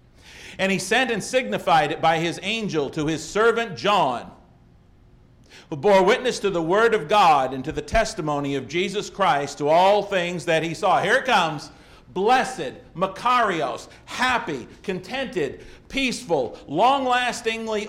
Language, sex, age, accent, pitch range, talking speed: English, male, 50-69, American, 170-230 Hz, 145 wpm